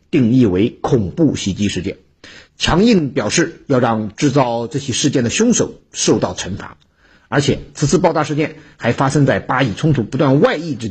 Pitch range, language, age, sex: 120-180 Hz, Chinese, 50-69, male